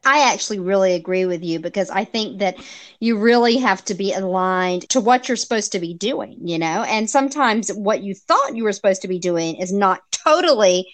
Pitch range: 185-220 Hz